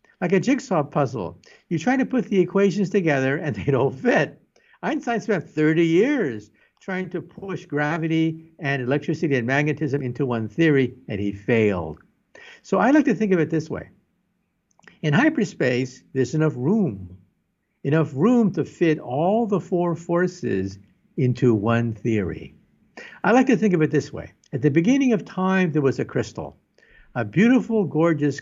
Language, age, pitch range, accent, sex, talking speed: English, 60-79, 135-200 Hz, American, male, 165 wpm